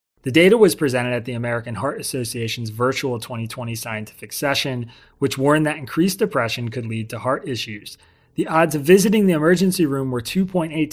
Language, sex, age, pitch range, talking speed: English, male, 30-49, 115-140 Hz, 175 wpm